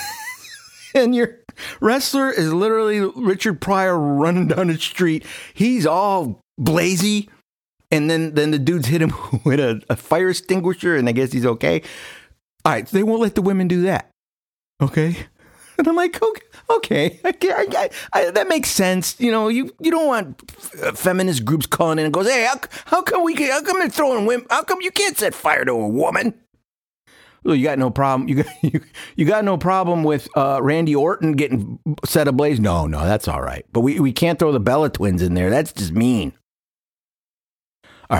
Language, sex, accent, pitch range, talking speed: English, male, American, 135-220 Hz, 195 wpm